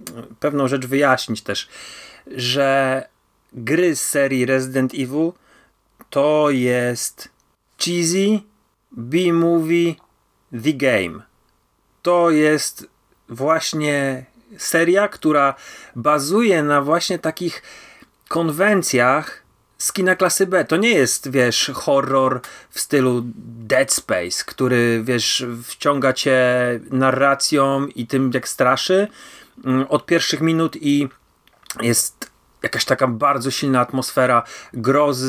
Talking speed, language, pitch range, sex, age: 100 wpm, Polish, 125-165 Hz, male, 30-49